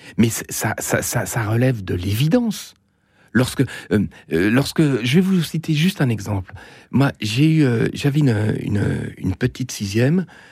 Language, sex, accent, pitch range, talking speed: French, male, French, 100-130 Hz, 155 wpm